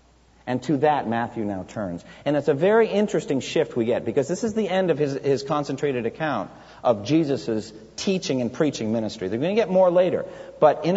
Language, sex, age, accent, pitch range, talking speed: English, male, 50-69, American, 110-155 Hz, 210 wpm